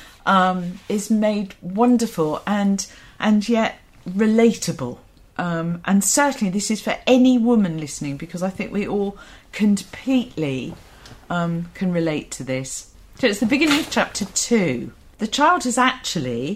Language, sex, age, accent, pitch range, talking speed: English, female, 40-59, British, 145-210 Hz, 140 wpm